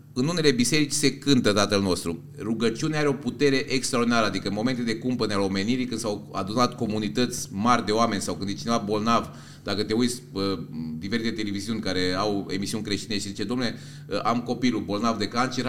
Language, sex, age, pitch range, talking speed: Romanian, male, 30-49, 115-145 Hz, 185 wpm